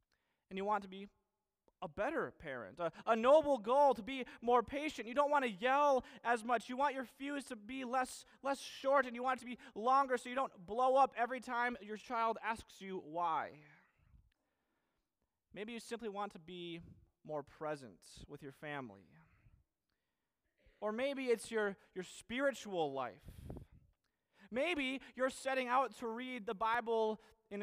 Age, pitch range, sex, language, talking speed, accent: 30-49, 170-250 Hz, male, English, 170 wpm, American